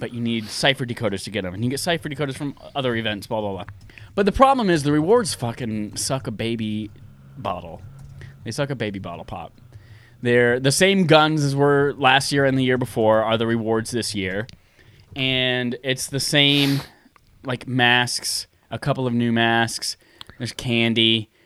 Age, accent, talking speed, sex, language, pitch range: 20-39, American, 185 wpm, male, English, 115-150 Hz